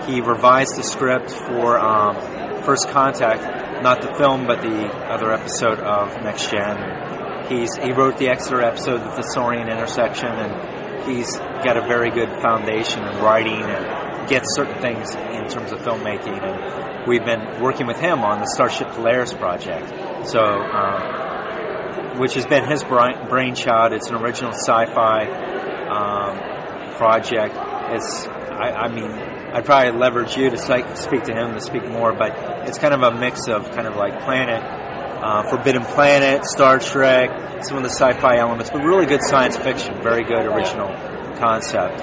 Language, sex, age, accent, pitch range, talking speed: English, male, 30-49, American, 110-130 Hz, 165 wpm